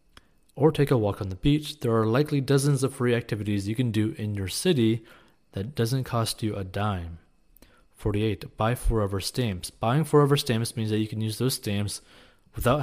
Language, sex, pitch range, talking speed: English, male, 100-130 Hz, 190 wpm